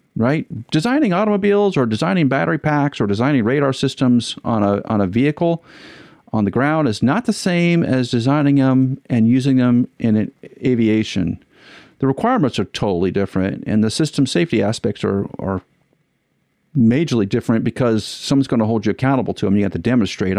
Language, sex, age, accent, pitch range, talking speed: English, male, 50-69, American, 110-150 Hz, 175 wpm